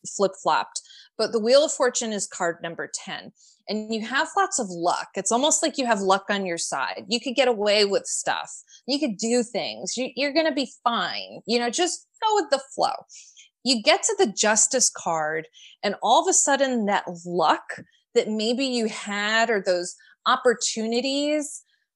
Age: 20-39